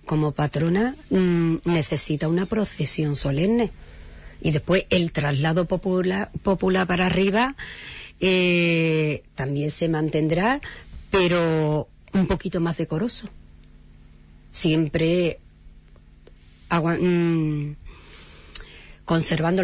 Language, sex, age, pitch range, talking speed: Spanish, female, 40-59, 160-225 Hz, 75 wpm